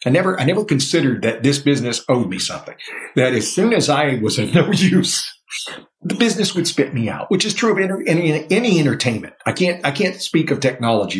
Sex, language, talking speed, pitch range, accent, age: male, English, 220 wpm, 110-155 Hz, American, 50-69